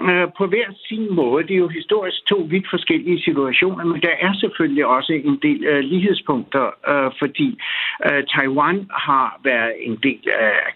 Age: 60-79